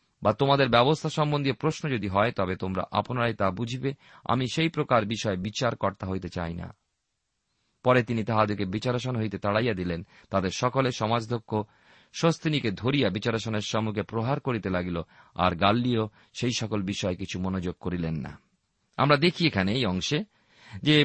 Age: 40-59